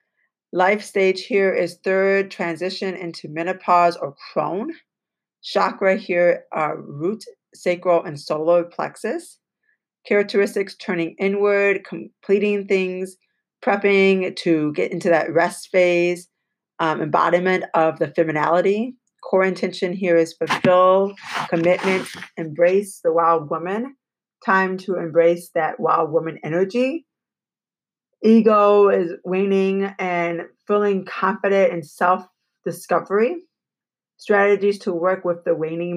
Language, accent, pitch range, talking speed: English, American, 170-195 Hz, 110 wpm